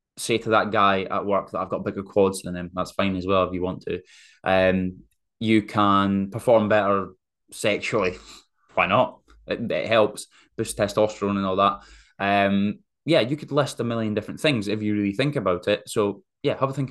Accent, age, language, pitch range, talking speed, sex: British, 10-29, English, 95-110 Hz, 200 wpm, male